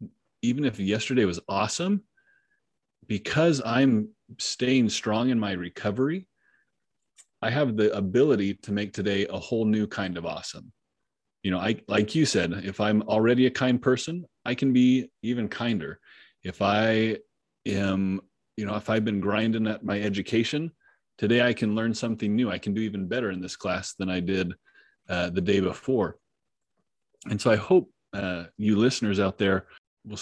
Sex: male